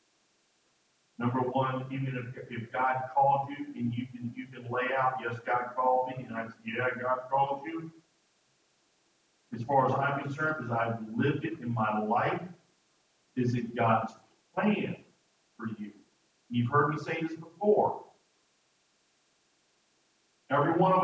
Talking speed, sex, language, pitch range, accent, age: 150 wpm, male, English, 130-205 Hz, American, 50-69